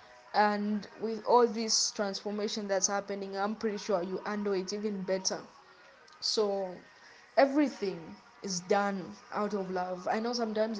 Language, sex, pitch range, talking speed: English, female, 195-225 Hz, 140 wpm